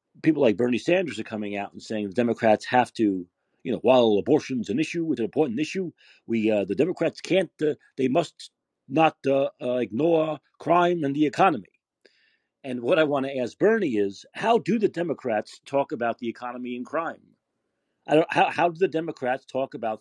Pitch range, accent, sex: 115-165 Hz, American, male